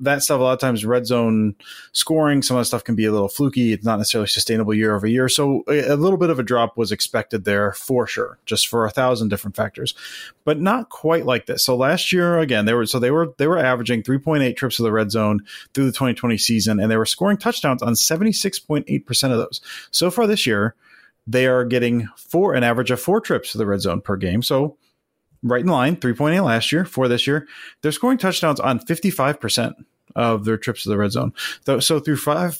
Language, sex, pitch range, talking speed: English, male, 115-150 Hz, 230 wpm